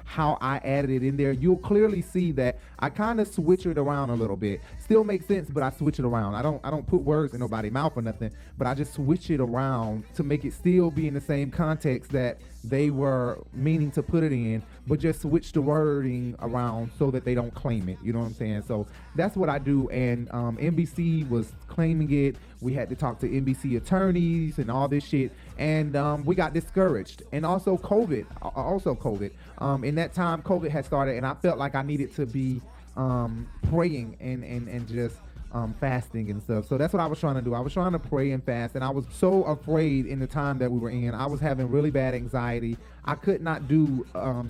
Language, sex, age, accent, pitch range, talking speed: English, male, 30-49, American, 120-155 Hz, 235 wpm